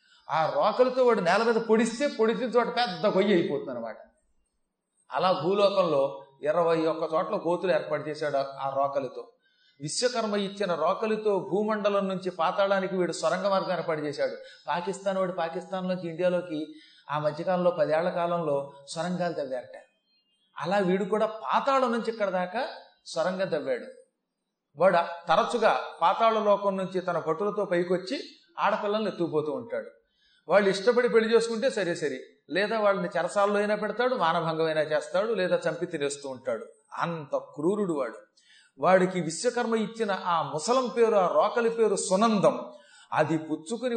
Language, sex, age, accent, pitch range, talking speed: Telugu, male, 30-49, native, 170-225 Hz, 130 wpm